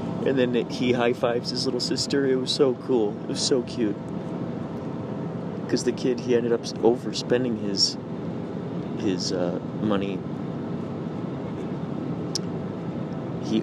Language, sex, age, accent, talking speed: English, male, 40-59, American, 120 wpm